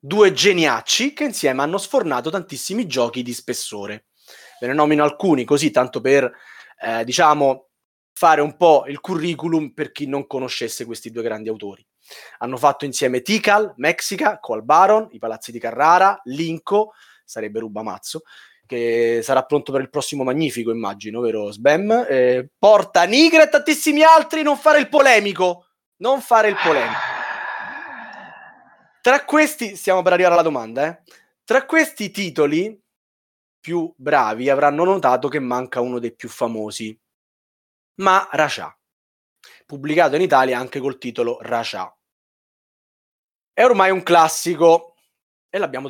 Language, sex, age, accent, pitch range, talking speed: Italian, male, 20-39, native, 125-205 Hz, 135 wpm